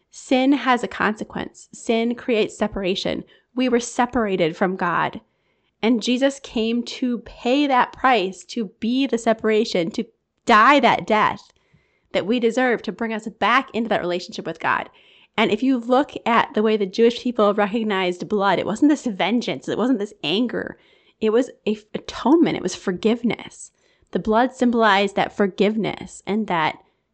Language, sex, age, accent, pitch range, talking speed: English, female, 20-39, American, 215-260 Hz, 160 wpm